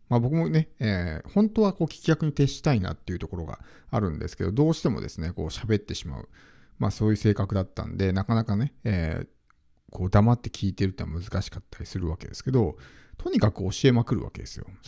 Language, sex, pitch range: Japanese, male, 95-150 Hz